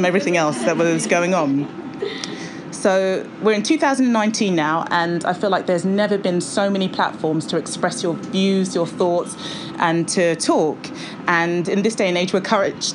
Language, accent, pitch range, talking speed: English, British, 170-215 Hz, 175 wpm